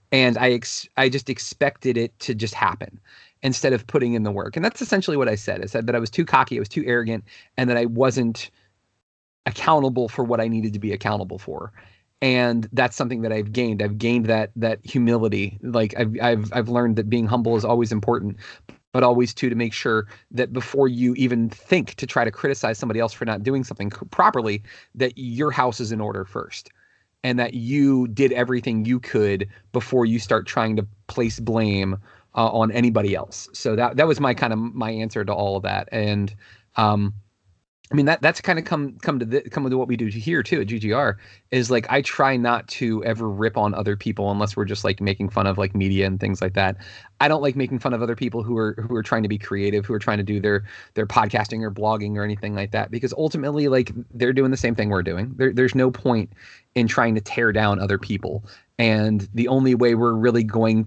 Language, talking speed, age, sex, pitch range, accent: English, 225 wpm, 30-49, male, 105-125 Hz, American